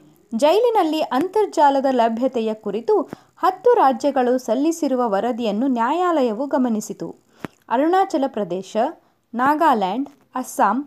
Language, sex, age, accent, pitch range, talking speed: Kannada, female, 20-39, native, 235-325 Hz, 75 wpm